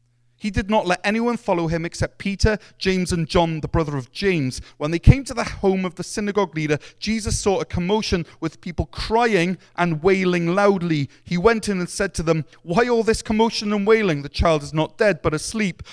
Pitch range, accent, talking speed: 135-185 Hz, British, 210 wpm